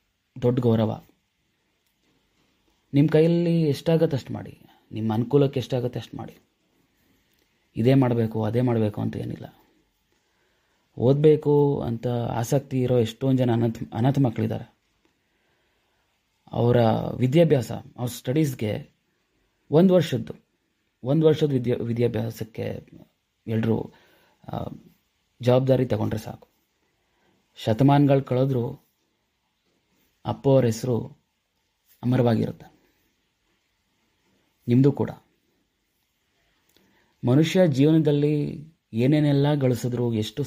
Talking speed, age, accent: 75 wpm, 30-49, native